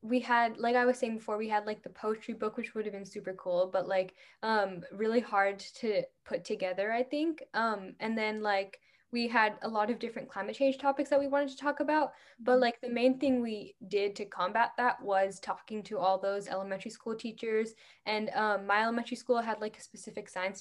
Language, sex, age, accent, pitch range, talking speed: English, female, 10-29, American, 200-240 Hz, 220 wpm